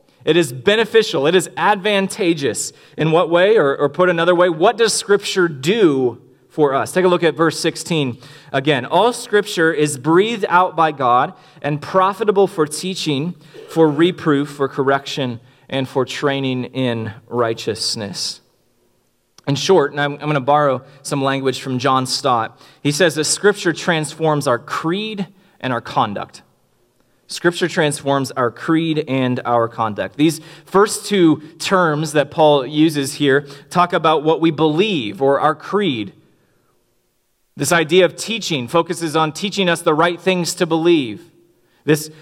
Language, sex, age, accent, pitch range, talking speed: English, male, 30-49, American, 145-180 Hz, 150 wpm